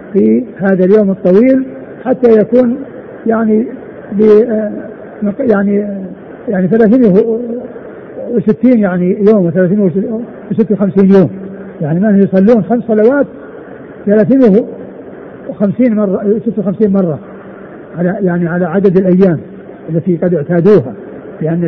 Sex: male